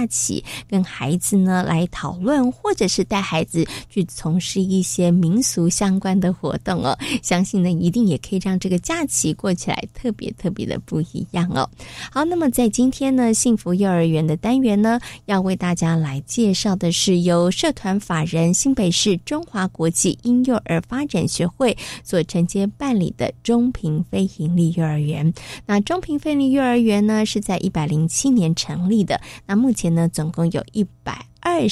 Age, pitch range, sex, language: 20-39, 175-235 Hz, female, Chinese